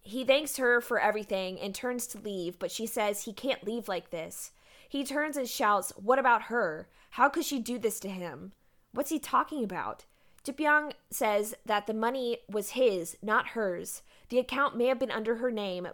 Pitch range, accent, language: 195-250 Hz, American, English